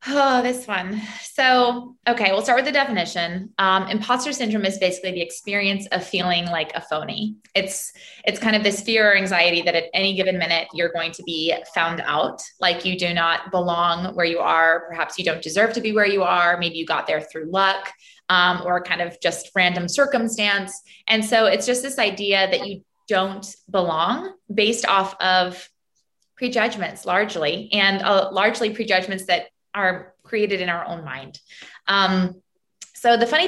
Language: English